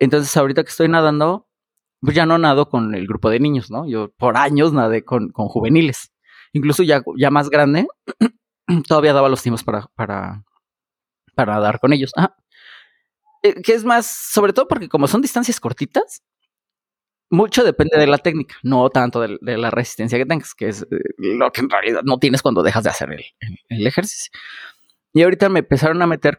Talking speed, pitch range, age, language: 185 wpm, 125-170 Hz, 30-49, Spanish